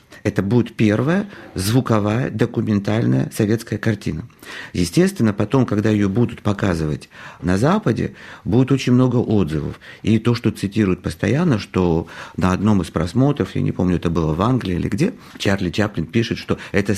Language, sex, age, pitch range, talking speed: Russian, male, 50-69, 95-125 Hz, 150 wpm